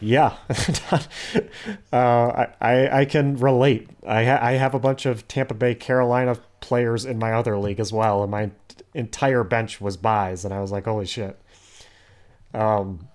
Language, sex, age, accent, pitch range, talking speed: English, male, 30-49, American, 105-145 Hz, 170 wpm